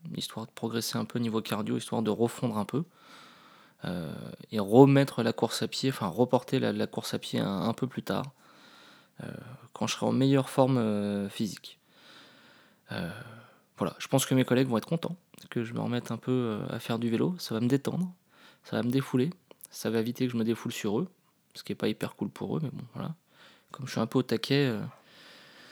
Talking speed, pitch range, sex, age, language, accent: 225 wpm, 115-135 Hz, male, 20-39, French, French